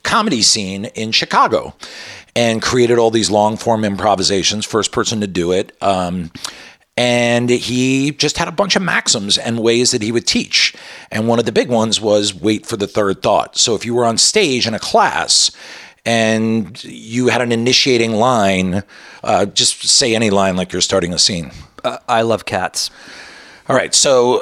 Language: English